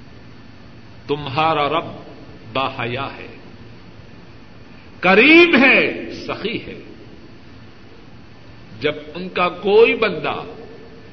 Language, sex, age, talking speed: Urdu, male, 50-69, 70 wpm